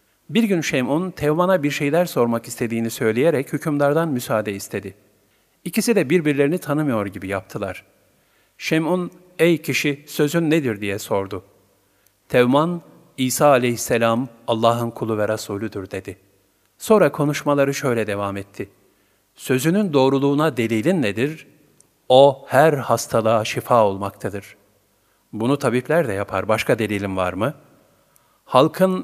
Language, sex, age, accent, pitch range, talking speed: Turkish, male, 50-69, native, 110-160 Hz, 115 wpm